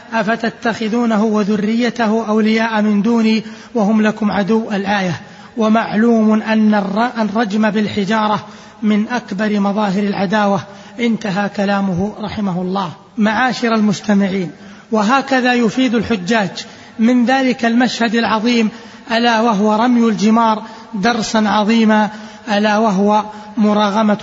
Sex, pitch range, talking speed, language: male, 210-240 Hz, 95 wpm, Arabic